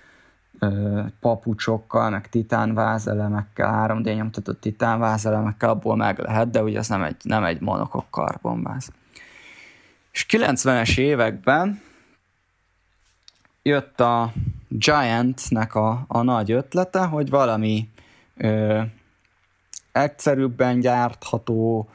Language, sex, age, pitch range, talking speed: Hungarian, male, 20-39, 105-130 Hz, 85 wpm